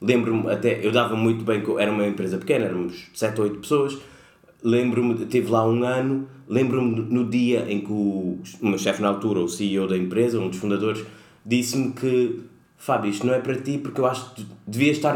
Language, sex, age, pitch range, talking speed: Portuguese, male, 20-39, 110-130 Hz, 200 wpm